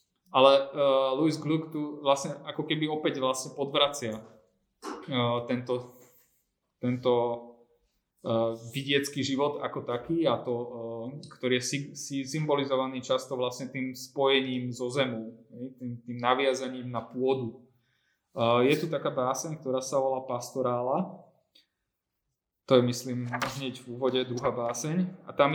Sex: male